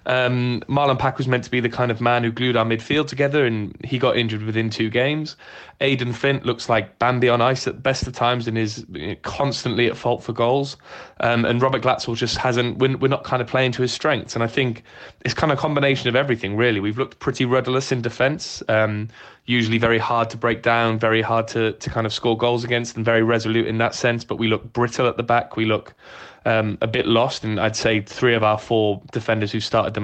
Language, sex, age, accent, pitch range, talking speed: English, male, 20-39, British, 110-125 Hz, 235 wpm